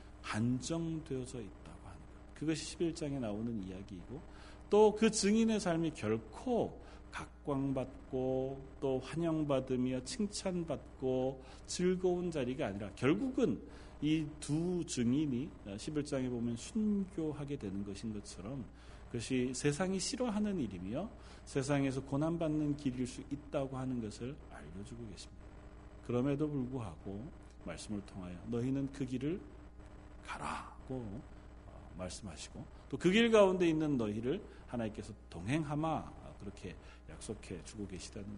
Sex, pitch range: male, 100-155 Hz